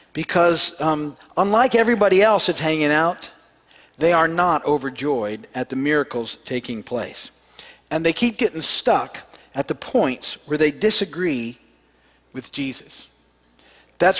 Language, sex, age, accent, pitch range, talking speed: English, male, 50-69, American, 140-190 Hz, 130 wpm